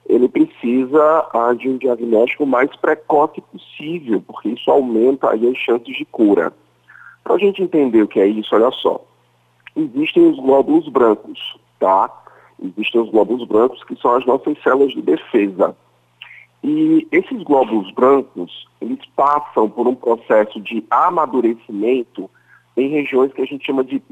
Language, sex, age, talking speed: Portuguese, male, 50-69, 150 wpm